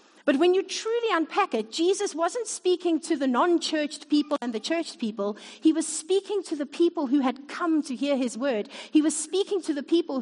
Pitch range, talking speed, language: 250-330 Hz, 210 wpm, English